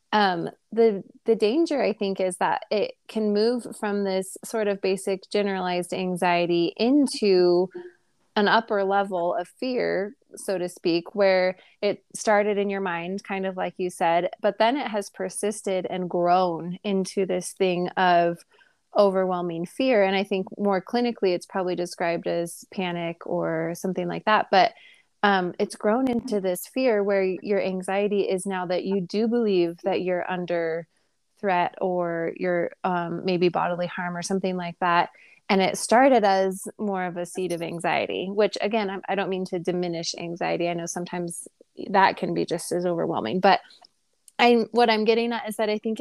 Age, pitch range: 20-39, 180-210 Hz